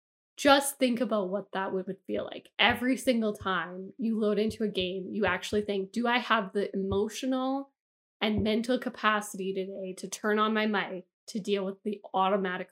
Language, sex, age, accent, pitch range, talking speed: English, female, 10-29, American, 190-225 Hz, 180 wpm